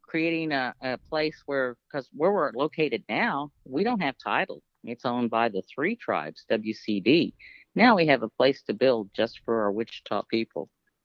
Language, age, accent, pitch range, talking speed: English, 50-69, American, 115-155 Hz, 180 wpm